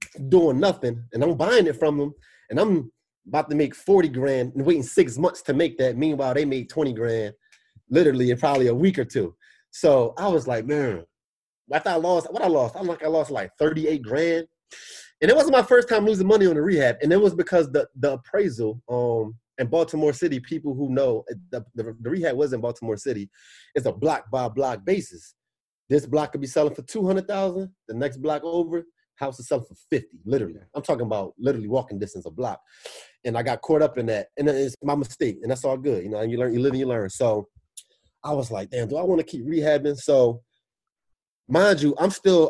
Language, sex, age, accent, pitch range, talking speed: English, male, 30-49, American, 125-165 Hz, 225 wpm